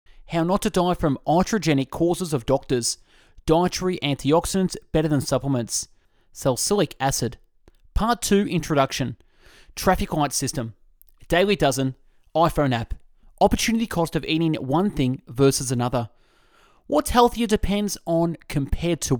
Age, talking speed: 20-39, 125 wpm